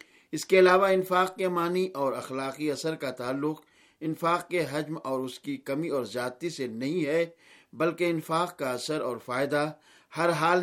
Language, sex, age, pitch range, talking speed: Urdu, male, 50-69, 140-175 Hz, 175 wpm